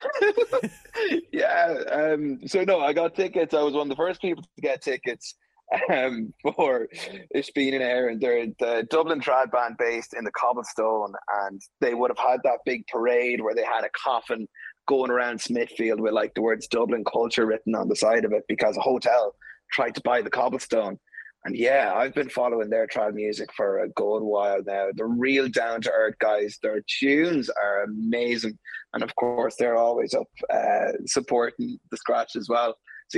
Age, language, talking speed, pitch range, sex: 20-39, English, 185 wpm, 110-165 Hz, male